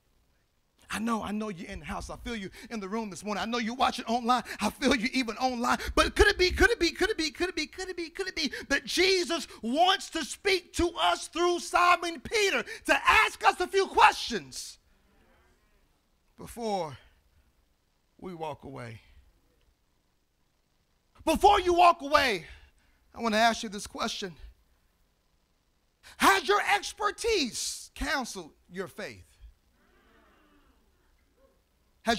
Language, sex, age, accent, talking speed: English, male, 40-59, American, 155 wpm